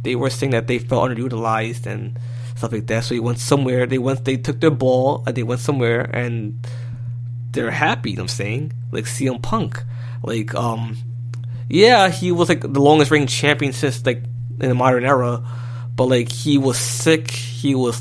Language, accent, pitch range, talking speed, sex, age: English, American, 120-130 Hz, 195 wpm, male, 20-39